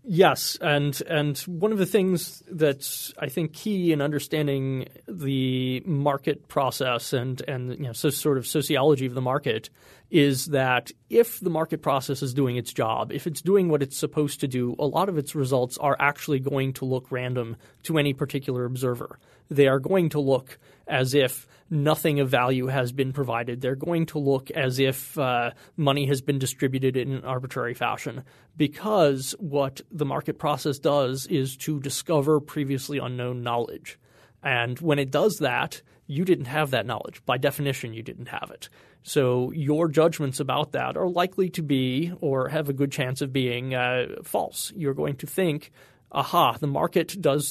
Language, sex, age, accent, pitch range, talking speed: English, male, 30-49, American, 130-155 Hz, 180 wpm